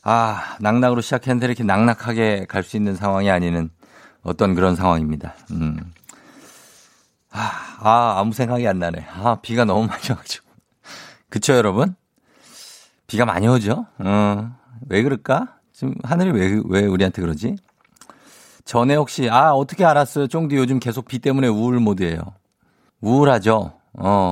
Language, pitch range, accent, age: Korean, 95-125 Hz, native, 50-69